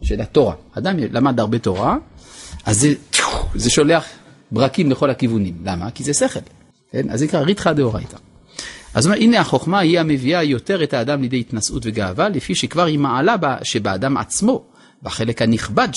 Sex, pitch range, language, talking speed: male, 115-170 Hz, Hebrew, 160 wpm